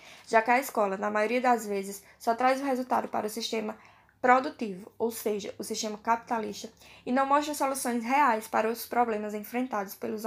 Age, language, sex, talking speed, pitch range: 10-29, Portuguese, female, 180 wpm, 215-260 Hz